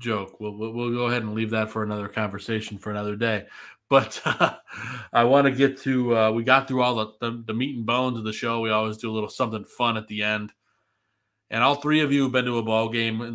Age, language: 20-39, English